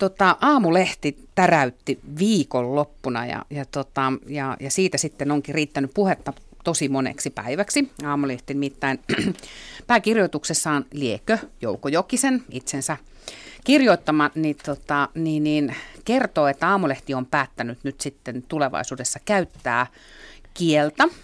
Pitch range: 135-180 Hz